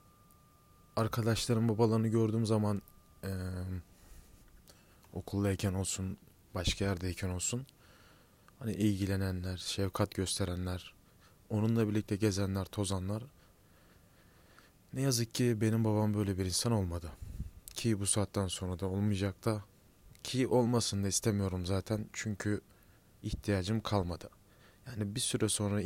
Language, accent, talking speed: Turkish, native, 105 wpm